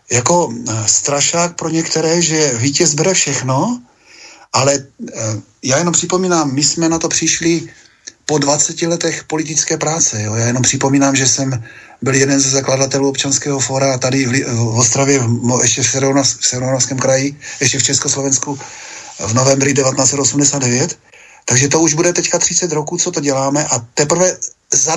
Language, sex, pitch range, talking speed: Slovak, male, 135-170 Hz, 145 wpm